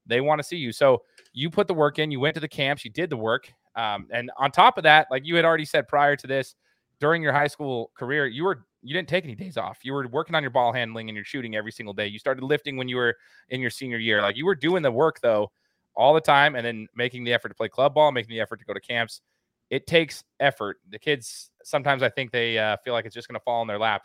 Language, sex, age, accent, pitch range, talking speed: English, male, 20-39, American, 115-150 Hz, 290 wpm